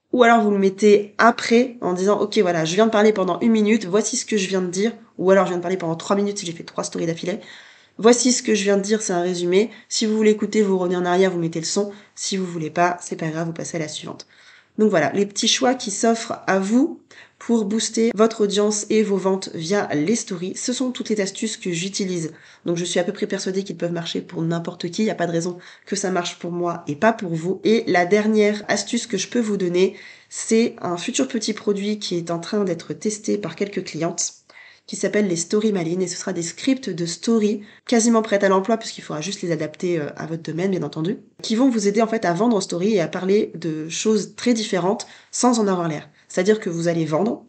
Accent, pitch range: French, 175-220 Hz